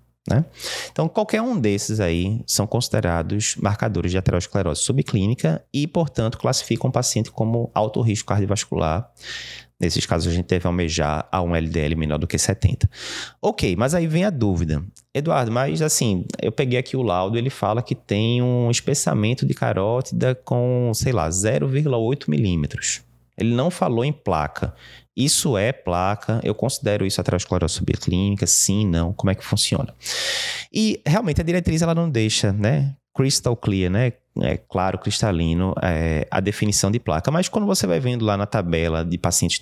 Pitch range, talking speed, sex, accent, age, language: 90-130 Hz, 170 wpm, male, Brazilian, 20-39, Portuguese